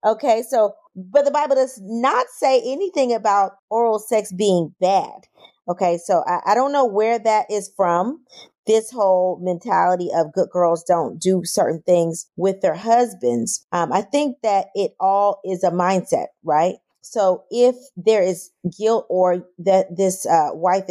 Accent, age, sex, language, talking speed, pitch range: American, 30-49, female, English, 165 wpm, 175-230 Hz